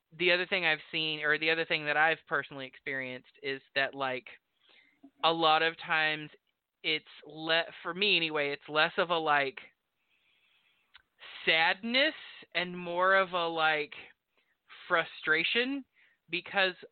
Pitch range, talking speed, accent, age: 145-170 Hz, 135 wpm, American, 20-39